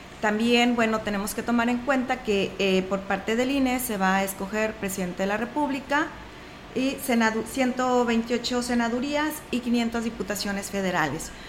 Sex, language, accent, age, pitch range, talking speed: female, Spanish, Mexican, 30-49, 210-250 Hz, 150 wpm